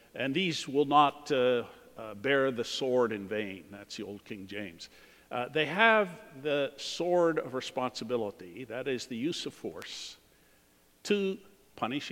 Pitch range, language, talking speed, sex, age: 115-160 Hz, English, 155 wpm, male, 60-79